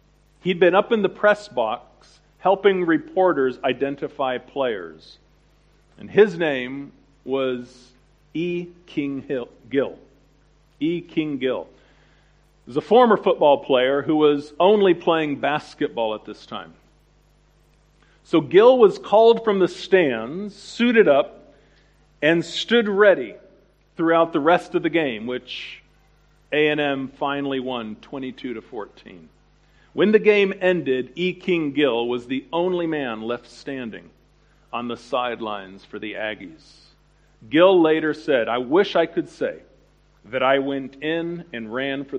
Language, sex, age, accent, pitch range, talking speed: English, male, 50-69, American, 130-180 Hz, 135 wpm